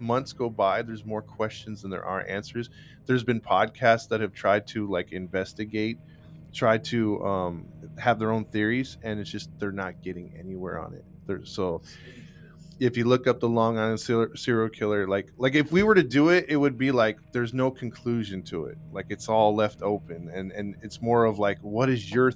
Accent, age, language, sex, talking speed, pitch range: American, 20-39, English, male, 205 wpm, 105-130 Hz